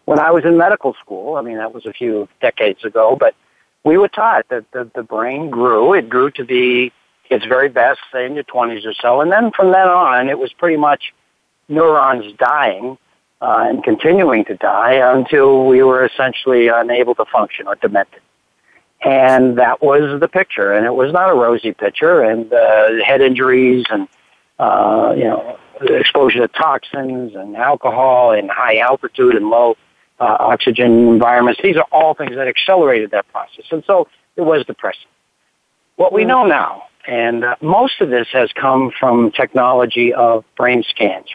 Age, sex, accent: 60-79, male, American